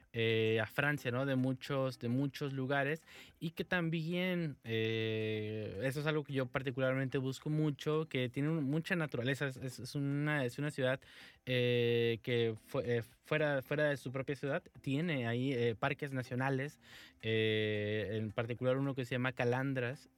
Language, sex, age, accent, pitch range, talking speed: English, male, 20-39, Mexican, 120-145 Hz, 160 wpm